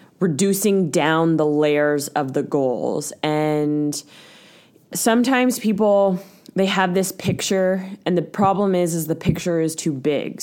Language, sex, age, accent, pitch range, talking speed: English, female, 20-39, American, 155-195 Hz, 140 wpm